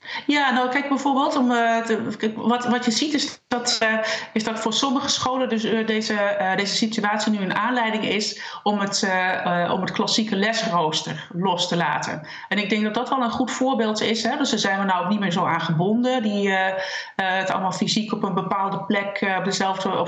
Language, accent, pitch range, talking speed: Dutch, Dutch, 190-240 Hz, 195 wpm